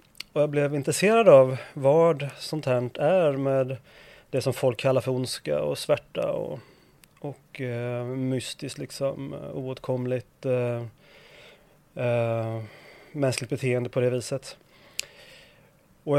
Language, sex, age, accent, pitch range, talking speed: English, male, 30-49, Swedish, 130-160 Hz, 120 wpm